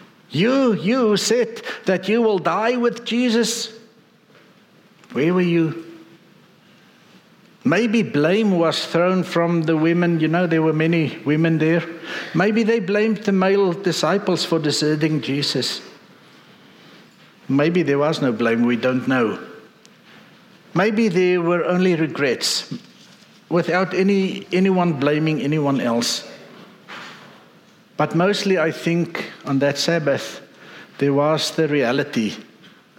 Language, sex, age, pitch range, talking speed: English, male, 60-79, 140-190 Hz, 120 wpm